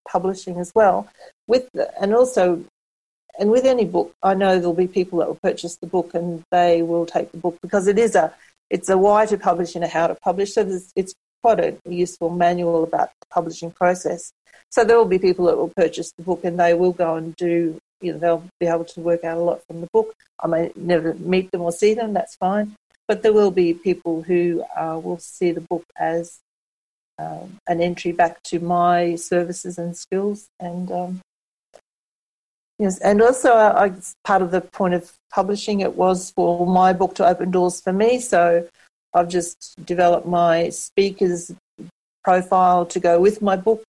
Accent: Australian